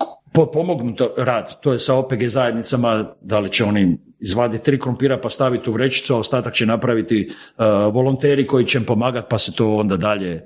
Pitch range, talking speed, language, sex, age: 115-155 Hz, 185 wpm, Croatian, male, 50-69